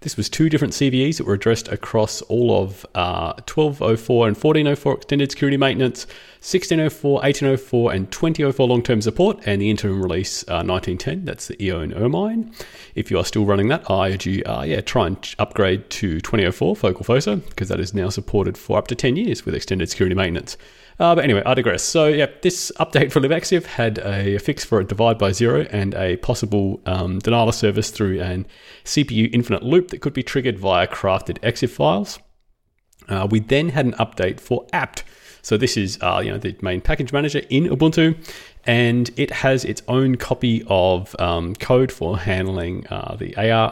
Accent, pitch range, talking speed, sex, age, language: Australian, 95-140 Hz, 190 wpm, male, 30-49, English